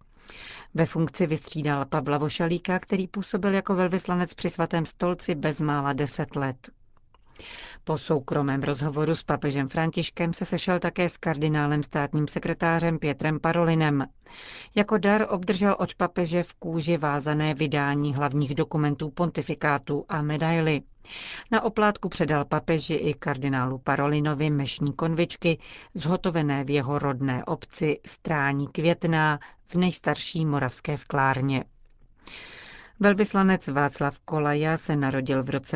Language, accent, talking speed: Czech, native, 120 wpm